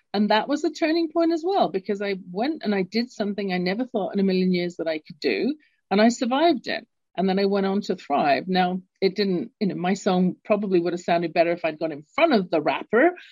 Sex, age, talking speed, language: female, 40-59, 255 wpm, English